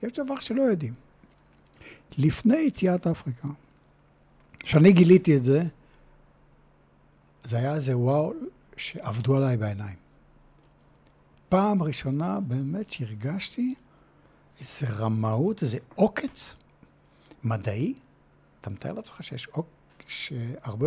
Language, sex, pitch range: Hebrew, male, 110-180 Hz